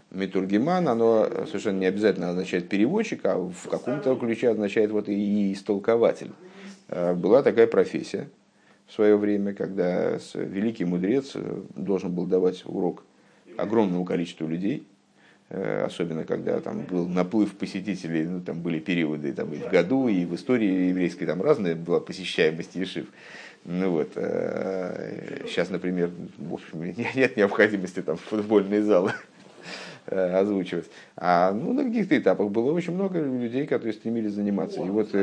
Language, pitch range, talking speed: Russian, 90-115 Hz, 135 wpm